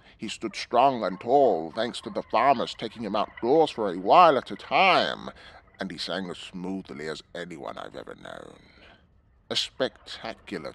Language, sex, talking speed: English, male, 165 wpm